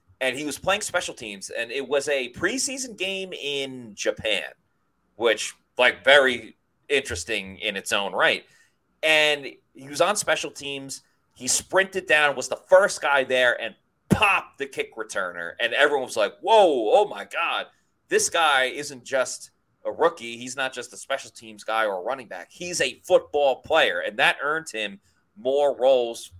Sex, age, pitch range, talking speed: male, 30-49, 125-190 Hz, 175 wpm